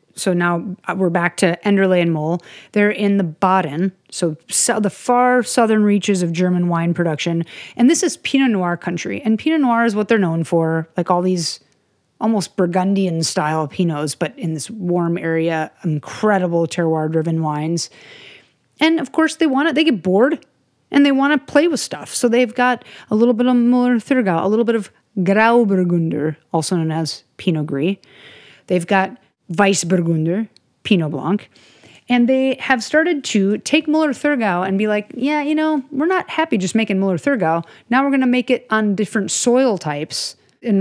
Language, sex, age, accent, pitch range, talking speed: English, female, 30-49, American, 175-245 Hz, 180 wpm